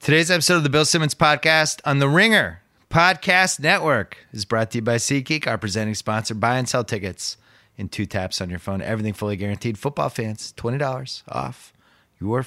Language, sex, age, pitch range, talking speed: English, male, 30-49, 95-120 Hz, 190 wpm